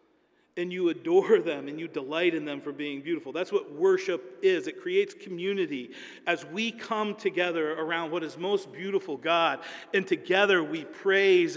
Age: 40-59